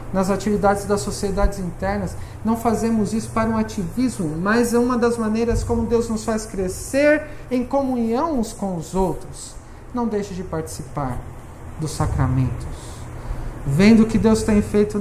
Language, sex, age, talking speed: Portuguese, male, 40-59, 155 wpm